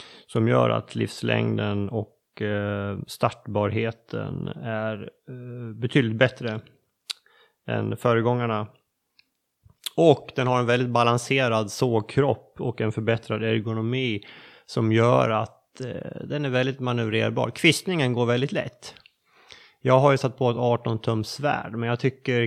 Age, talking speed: 30-49, 120 wpm